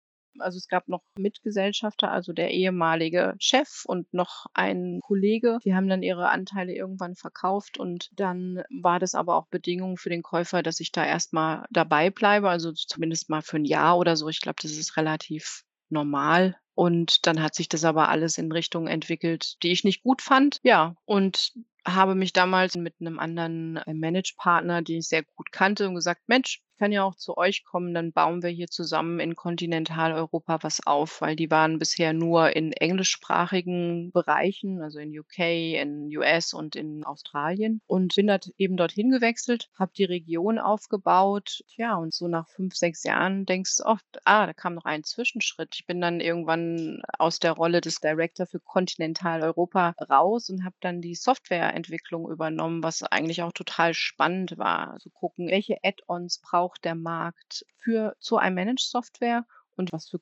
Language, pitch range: German, 165-190 Hz